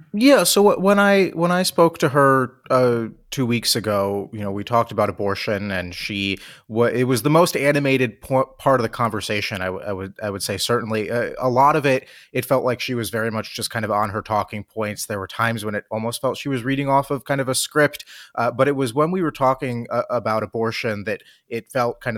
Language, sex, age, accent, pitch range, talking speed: English, male, 30-49, American, 105-130 Hz, 245 wpm